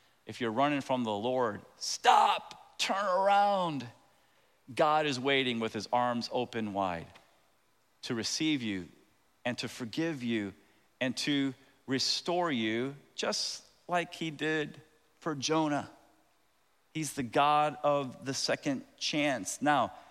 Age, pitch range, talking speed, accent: 40-59, 140-195 Hz, 125 wpm, American